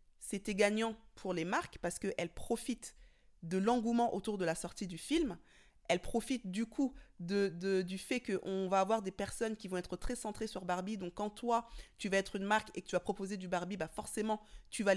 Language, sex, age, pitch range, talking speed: French, female, 20-39, 175-215 Hz, 220 wpm